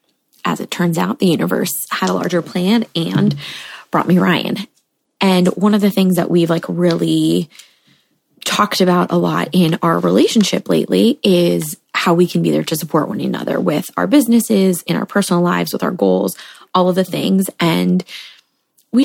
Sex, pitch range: female, 175-210 Hz